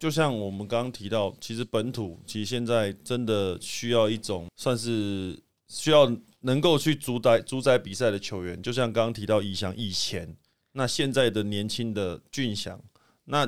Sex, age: male, 20-39